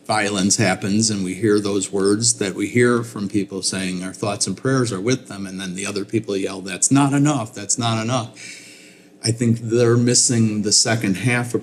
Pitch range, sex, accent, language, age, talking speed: 95-115 Hz, male, American, English, 40-59, 205 wpm